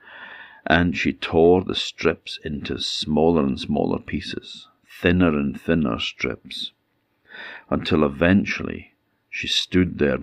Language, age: English, 60-79